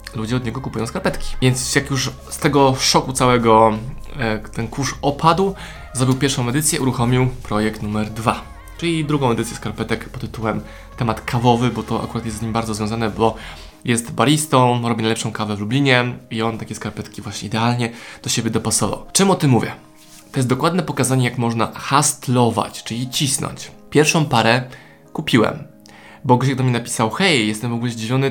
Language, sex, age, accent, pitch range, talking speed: Polish, male, 20-39, native, 110-135 Hz, 175 wpm